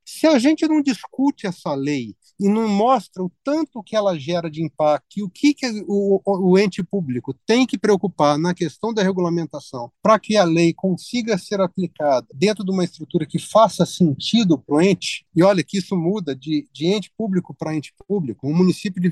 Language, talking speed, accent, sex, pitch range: Portuguese, 200 wpm, Brazilian, male, 155-210 Hz